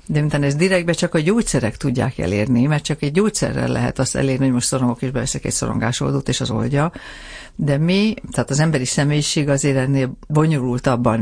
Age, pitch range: 60-79, 130-155 Hz